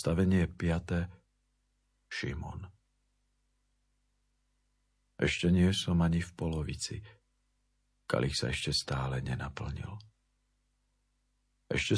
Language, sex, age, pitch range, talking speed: Slovak, male, 50-69, 80-100 Hz, 75 wpm